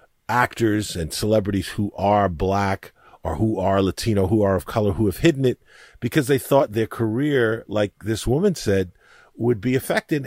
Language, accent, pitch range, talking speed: English, American, 95-130 Hz, 175 wpm